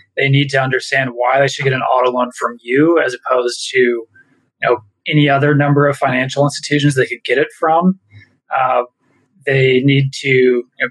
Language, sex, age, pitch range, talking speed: English, male, 20-39, 130-160 Hz, 195 wpm